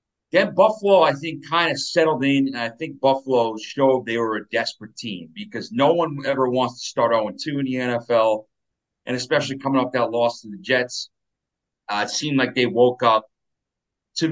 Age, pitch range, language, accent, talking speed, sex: 40-59, 110-135 Hz, English, American, 195 wpm, male